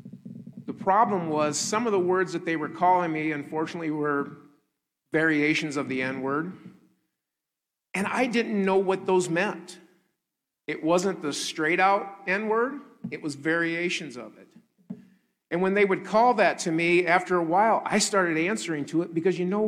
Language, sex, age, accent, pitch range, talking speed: English, male, 50-69, American, 160-195 Hz, 170 wpm